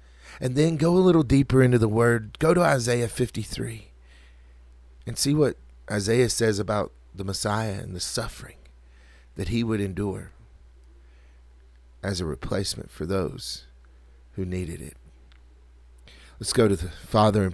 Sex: male